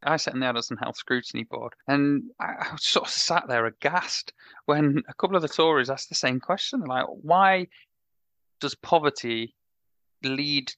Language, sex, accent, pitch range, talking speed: English, male, British, 115-135 Hz, 165 wpm